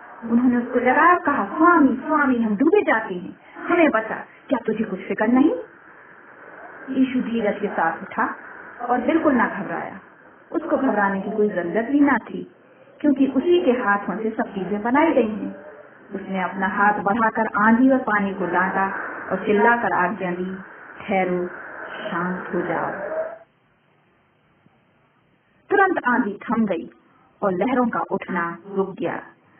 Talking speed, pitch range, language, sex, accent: 140 wpm, 195-270 Hz, Hindi, female, native